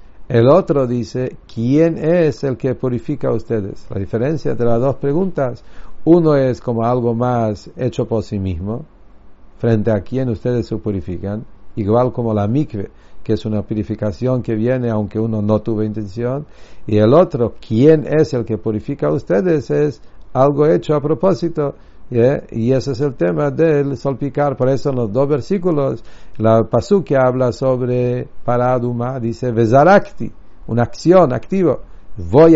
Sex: male